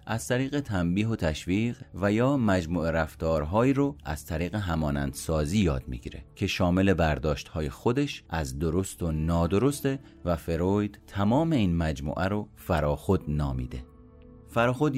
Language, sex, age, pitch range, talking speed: Persian, male, 30-49, 80-105 Hz, 130 wpm